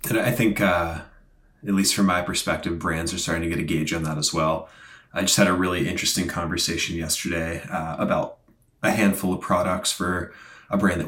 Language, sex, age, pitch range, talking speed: English, male, 20-39, 80-95 Hz, 205 wpm